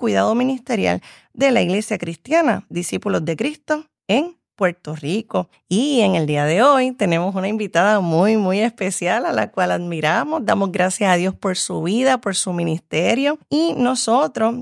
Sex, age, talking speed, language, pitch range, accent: female, 30-49, 165 wpm, Spanish, 190-260 Hz, American